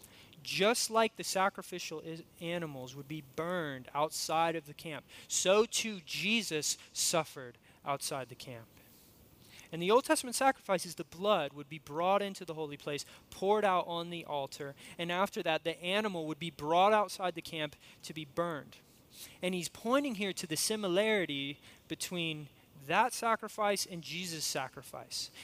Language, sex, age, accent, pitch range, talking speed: English, male, 20-39, American, 150-205 Hz, 155 wpm